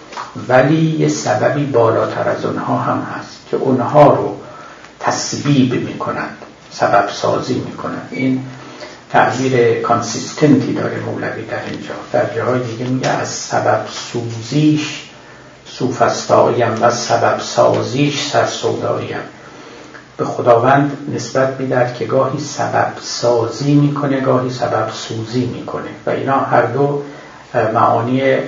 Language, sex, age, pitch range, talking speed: Persian, male, 50-69, 115-145 Hz, 105 wpm